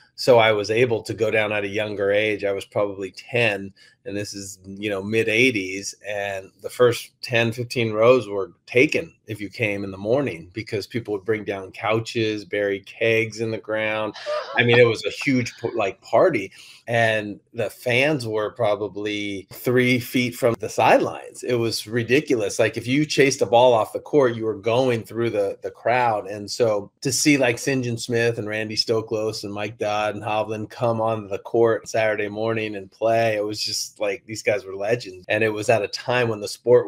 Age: 30-49